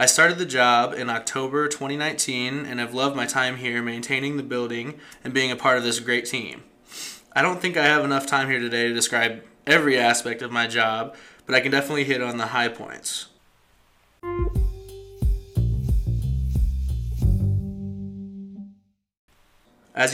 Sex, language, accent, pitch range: male, English, American, 115-135 Hz